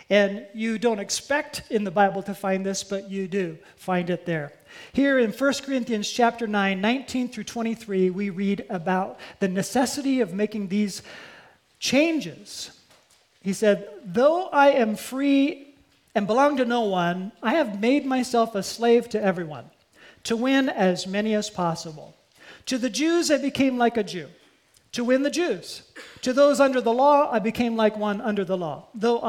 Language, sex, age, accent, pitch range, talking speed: English, male, 40-59, American, 200-250 Hz, 170 wpm